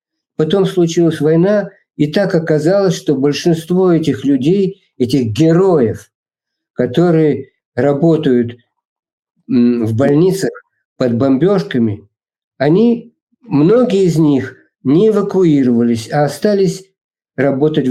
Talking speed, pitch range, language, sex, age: 90 wpm, 120-170 Hz, Russian, male, 50-69